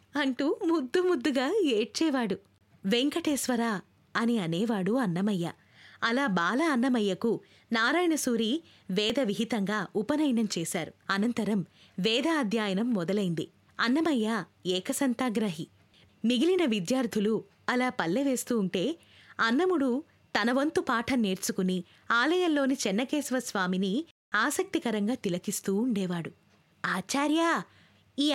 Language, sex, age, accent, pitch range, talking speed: Telugu, female, 20-39, native, 215-305 Hz, 80 wpm